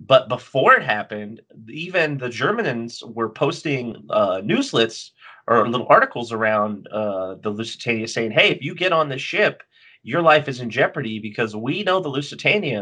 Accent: American